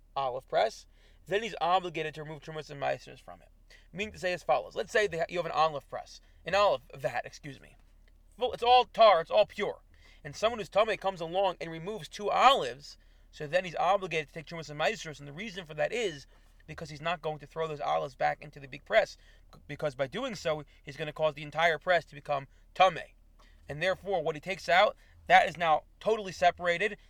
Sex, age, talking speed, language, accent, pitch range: male, 30-49, 220 wpm, English, American, 150-195 Hz